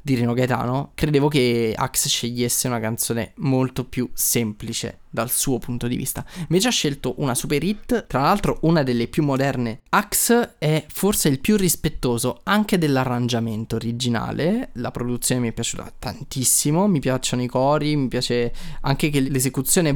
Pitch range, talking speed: 125-155 Hz, 160 wpm